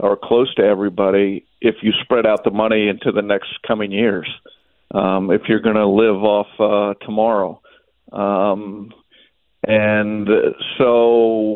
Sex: male